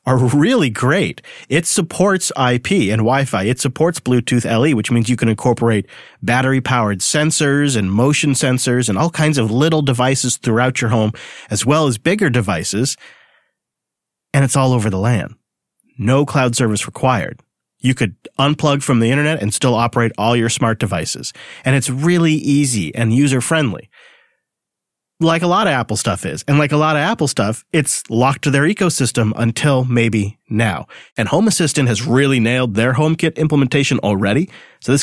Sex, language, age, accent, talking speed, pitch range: male, English, 40-59, American, 170 wpm, 115-145 Hz